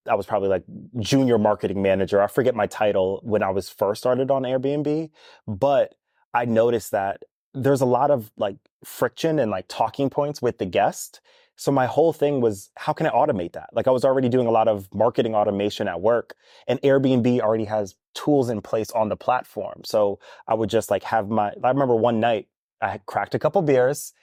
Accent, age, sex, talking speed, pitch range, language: American, 20-39, male, 210 wpm, 105-125 Hz, English